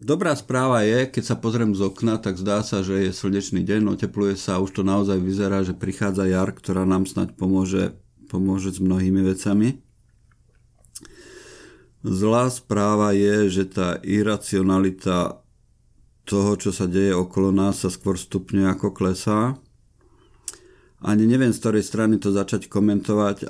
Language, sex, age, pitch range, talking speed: Slovak, male, 50-69, 95-105 Hz, 150 wpm